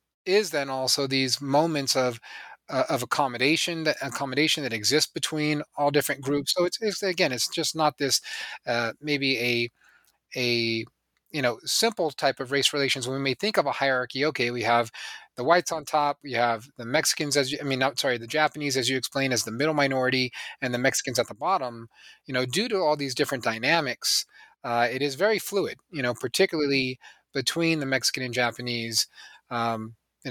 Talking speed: 195 wpm